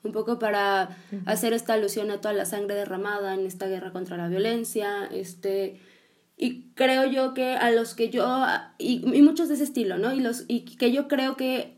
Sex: female